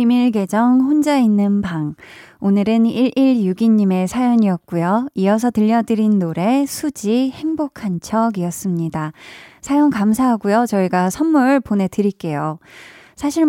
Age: 20-39